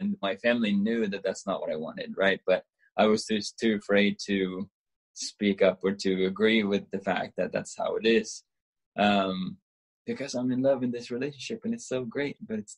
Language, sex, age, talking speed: English, male, 20-39, 210 wpm